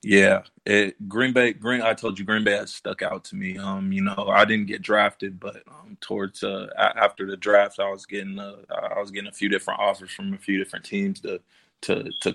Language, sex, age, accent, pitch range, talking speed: English, male, 20-39, American, 100-105 Hz, 235 wpm